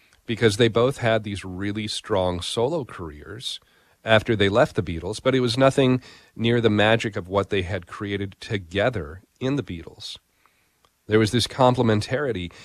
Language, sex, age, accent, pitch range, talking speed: English, male, 40-59, American, 100-130 Hz, 160 wpm